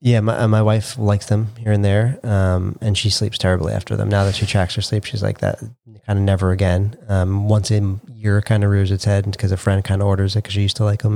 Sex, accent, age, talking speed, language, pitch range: male, American, 30-49, 280 wpm, English, 95-110 Hz